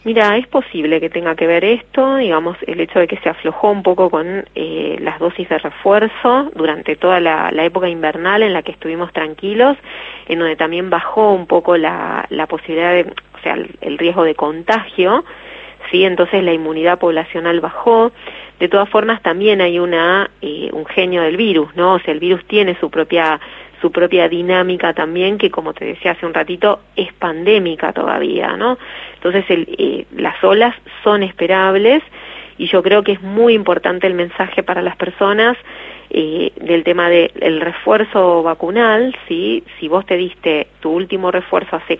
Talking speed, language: 175 wpm, Spanish